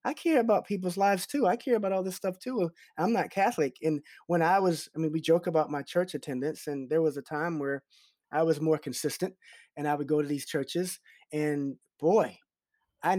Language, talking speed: English, 220 wpm